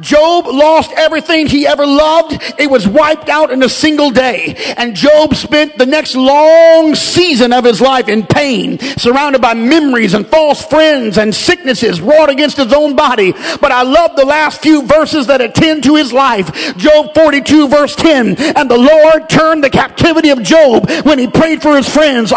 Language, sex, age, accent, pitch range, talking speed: English, male, 50-69, American, 285-350 Hz, 185 wpm